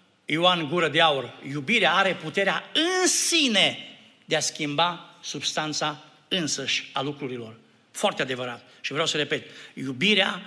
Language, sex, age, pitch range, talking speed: Romanian, male, 60-79, 140-230 Hz, 130 wpm